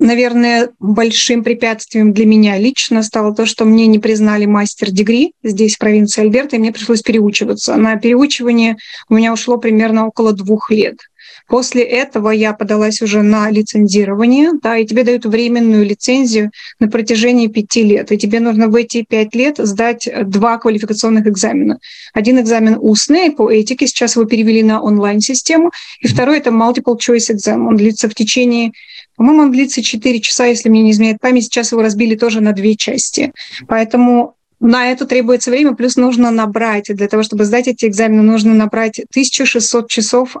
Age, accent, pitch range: 20-39, native, 220-245 Hz